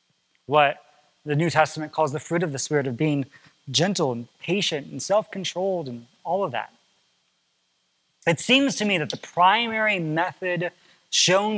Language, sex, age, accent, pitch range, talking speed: English, male, 20-39, American, 130-190 Hz, 155 wpm